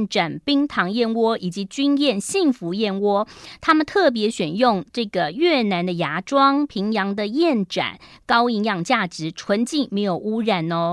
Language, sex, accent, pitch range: Chinese, female, American, 180-265 Hz